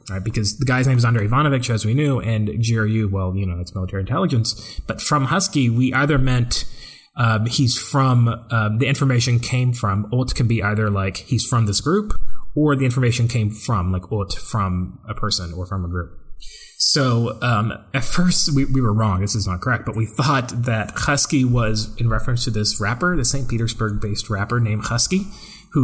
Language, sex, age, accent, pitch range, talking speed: English, male, 20-39, American, 100-125 Hz, 205 wpm